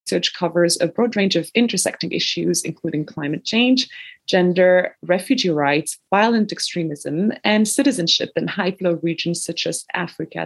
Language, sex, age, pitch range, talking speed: English, female, 20-39, 160-200 Hz, 140 wpm